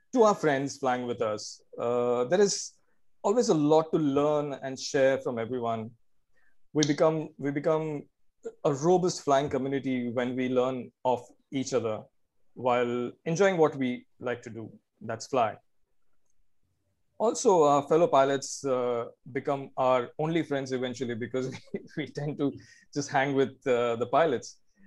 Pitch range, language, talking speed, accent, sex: 125-155 Hz, English, 145 wpm, Indian, male